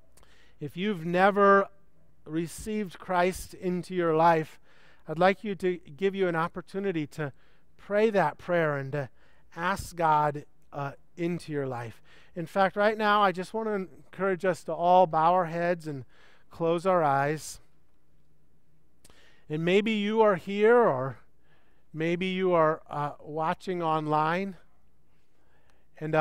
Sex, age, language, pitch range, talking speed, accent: male, 40-59, English, 145-195 Hz, 135 wpm, American